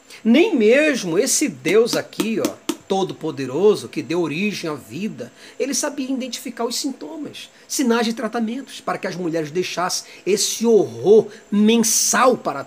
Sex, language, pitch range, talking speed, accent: male, Portuguese, 190-260 Hz, 135 wpm, Brazilian